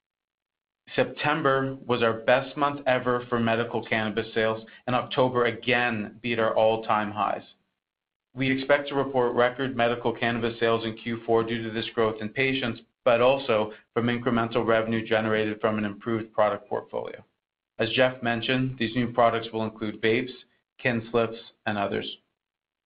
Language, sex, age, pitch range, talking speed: English, male, 40-59, 110-120 Hz, 150 wpm